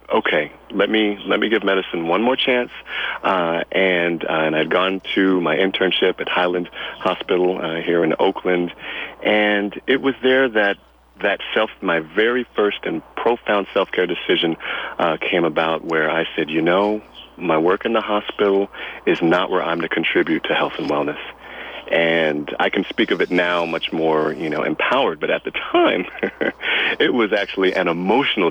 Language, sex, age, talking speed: English, male, 40-59, 175 wpm